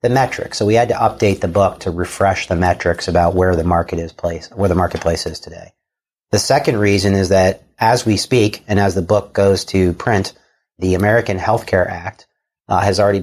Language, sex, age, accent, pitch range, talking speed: English, male, 40-59, American, 90-105 Hz, 210 wpm